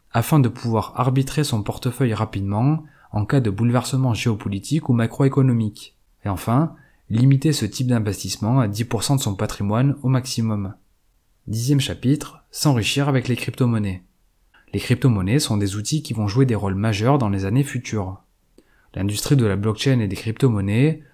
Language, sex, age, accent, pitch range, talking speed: French, male, 30-49, French, 105-140 Hz, 155 wpm